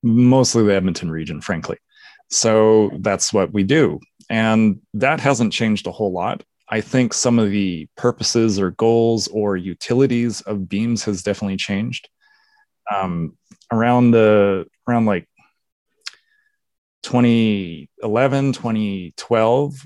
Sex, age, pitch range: male, 30-49, 100-120 Hz